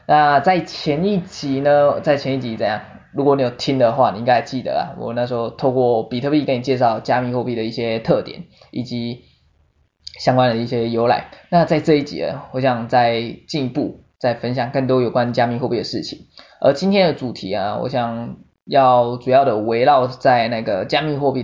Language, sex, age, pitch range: Chinese, male, 20-39, 120-145 Hz